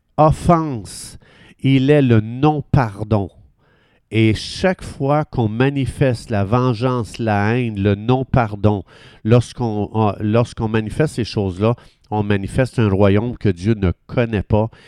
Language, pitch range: French, 105-135 Hz